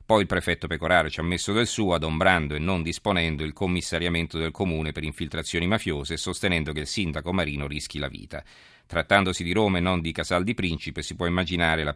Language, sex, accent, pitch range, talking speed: Italian, male, native, 80-95 Hz, 205 wpm